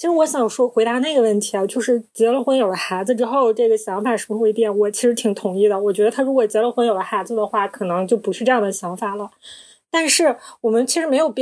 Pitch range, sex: 210-265 Hz, female